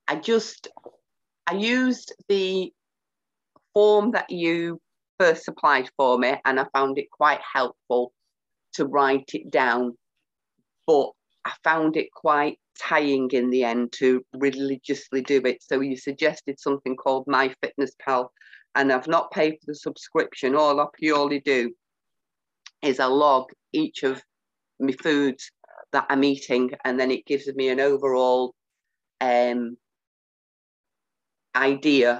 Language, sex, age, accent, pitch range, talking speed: English, female, 40-59, British, 130-145 Hz, 135 wpm